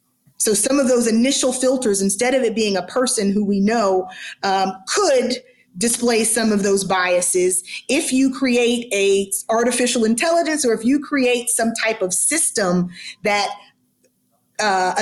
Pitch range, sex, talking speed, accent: 190-250 Hz, female, 150 wpm, American